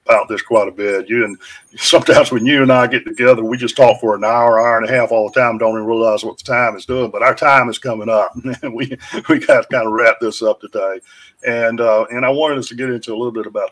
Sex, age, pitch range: male, 50-69, 110-135 Hz